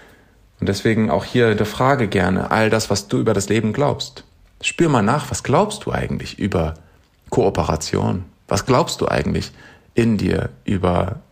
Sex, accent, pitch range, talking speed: male, German, 95-120 Hz, 165 wpm